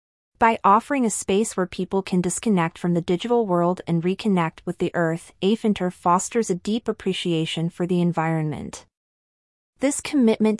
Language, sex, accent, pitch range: English, female, American, 170-210 Hz